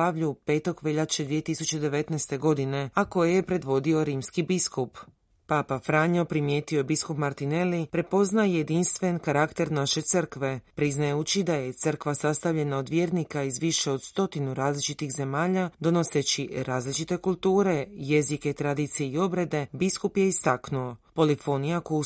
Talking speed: 120 wpm